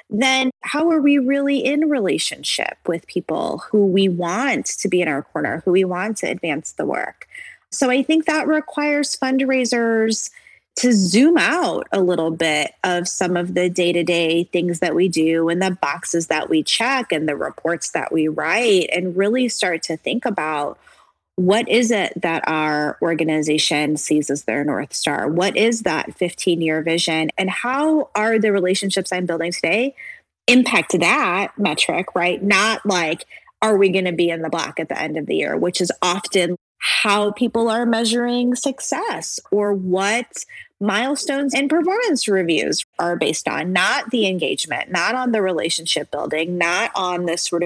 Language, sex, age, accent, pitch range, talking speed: English, female, 20-39, American, 170-255 Hz, 170 wpm